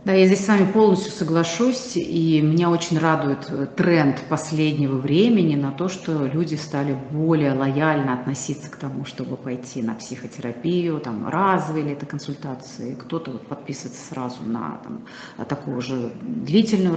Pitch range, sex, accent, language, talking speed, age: 145-210 Hz, female, native, Russian, 140 wpm, 30-49